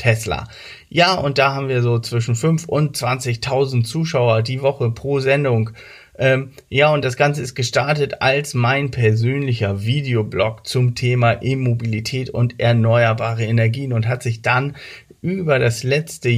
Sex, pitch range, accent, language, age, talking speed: male, 115-135 Hz, German, German, 40-59, 145 wpm